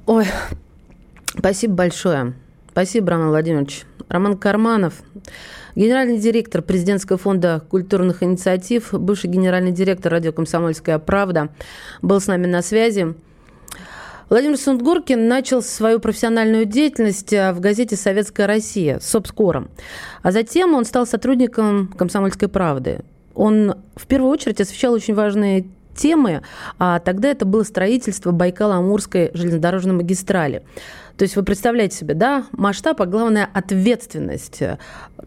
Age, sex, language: 30-49, female, Russian